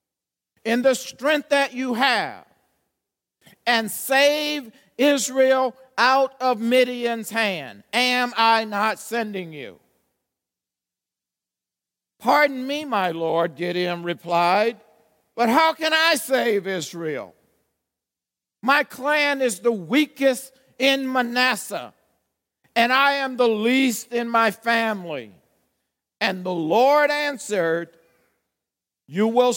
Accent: American